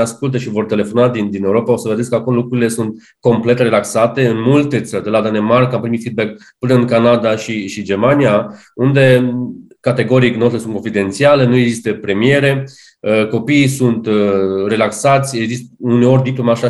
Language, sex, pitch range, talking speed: Romanian, male, 110-130 Hz, 165 wpm